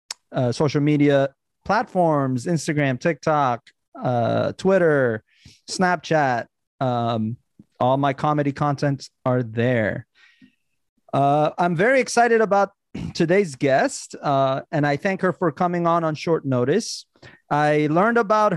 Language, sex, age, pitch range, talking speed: English, male, 30-49, 135-180 Hz, 120 wpm